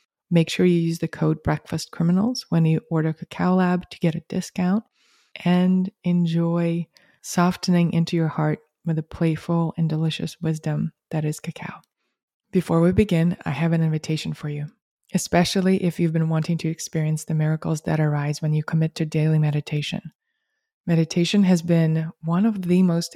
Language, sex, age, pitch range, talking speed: English, female, 20-39, 160-180 Hz, 165 wpm